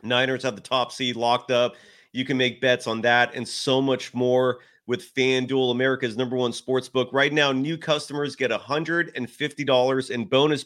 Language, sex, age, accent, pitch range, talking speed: English, male, 30-49, American, 130-175 Hz, 180 wpm